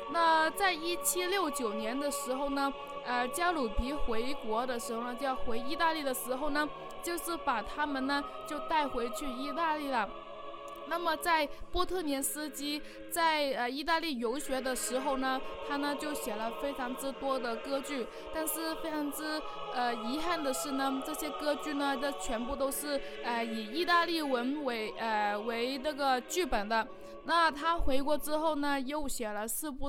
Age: 20-39